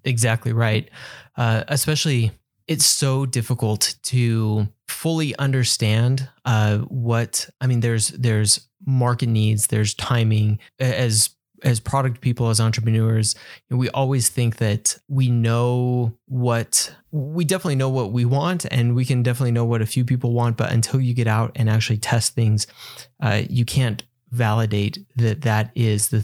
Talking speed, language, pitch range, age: 150 wpm, English, 110-130 Hz, 20-39